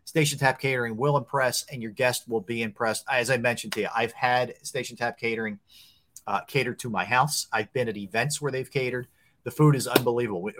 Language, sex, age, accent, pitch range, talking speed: English, male, 40-59, American, 120-145 Hz, 210 wpm